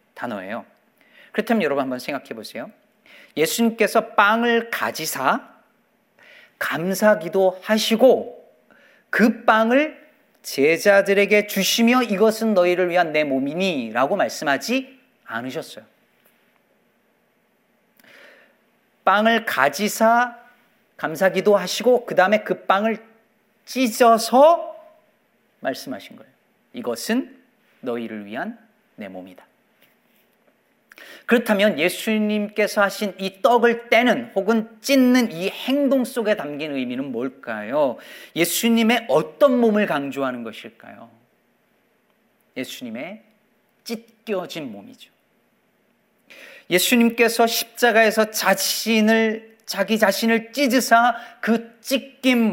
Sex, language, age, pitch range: male, Korean, 40-59, 195-240 Hz